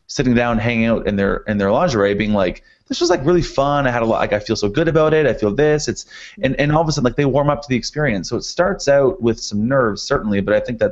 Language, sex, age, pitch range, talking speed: English, male, 30-49, 100-125 Hz, 310 wpm